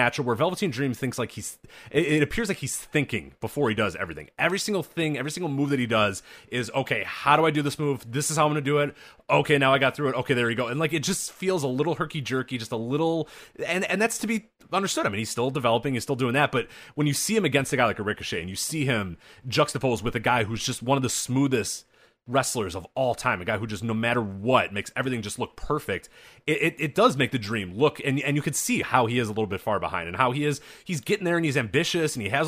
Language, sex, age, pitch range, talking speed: English, male, 30-49, 115-155 Hz, 275 wpm